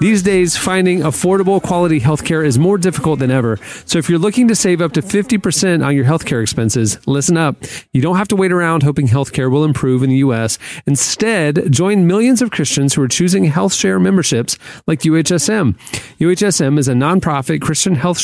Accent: American